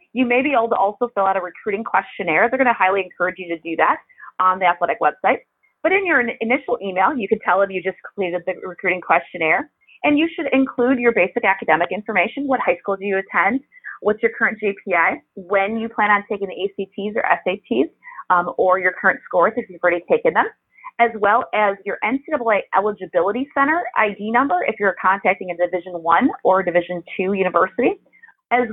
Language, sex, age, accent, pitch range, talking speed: English, female, 30-49, American, 185-265 Hz, 200 wpm